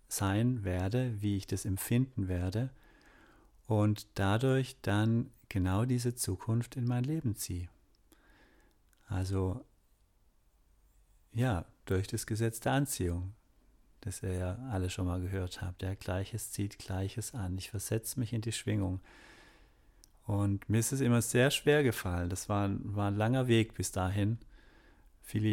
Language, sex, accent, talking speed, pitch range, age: German, male, German, 140 wpm, 95-115 Hz, 40-59